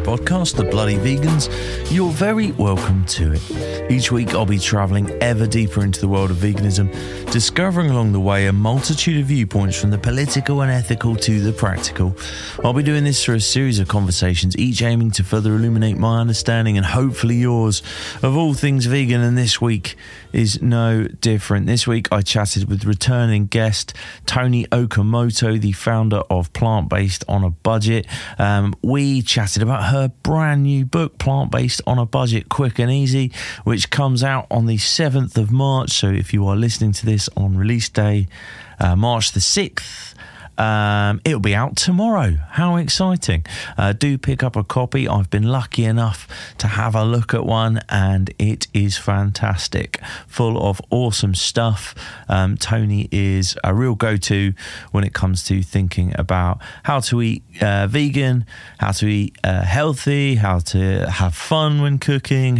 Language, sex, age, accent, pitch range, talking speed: English, male, 30-49, British, 100-125 Hz, 175 wpm